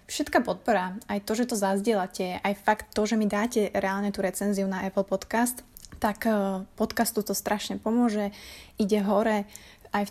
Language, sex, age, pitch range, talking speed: Slovak, female, 20-39, 195-225 Hz, 165 wpm